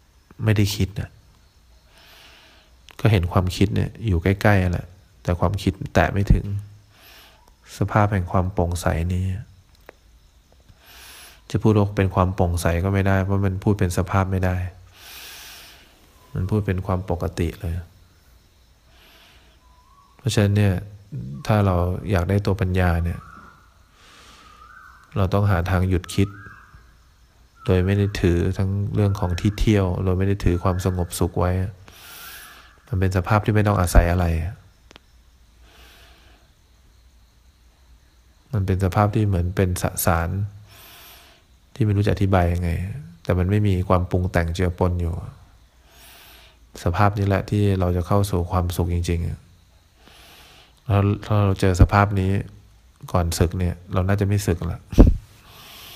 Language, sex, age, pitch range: English, male, 20-39, 85-100 Hz